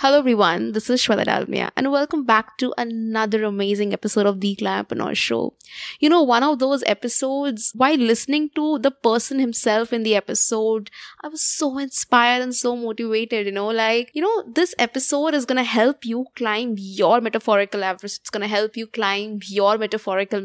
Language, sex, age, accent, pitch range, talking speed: English, female, 20-39, Indian, 210-255 Hz, 190 wpm